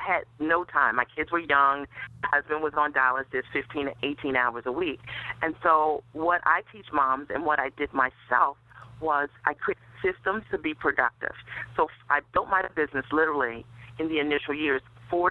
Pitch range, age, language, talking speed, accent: 130-155 Hz, 40-59, English, 180 wpm, American